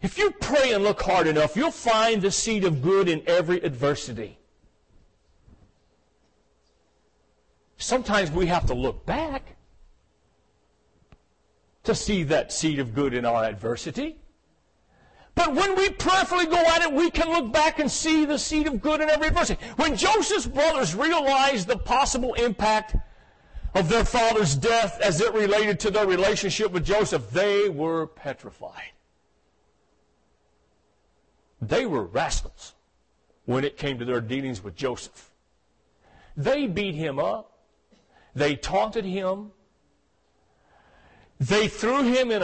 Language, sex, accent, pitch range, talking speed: English, male, American, 165-275 Hz, 135 wpm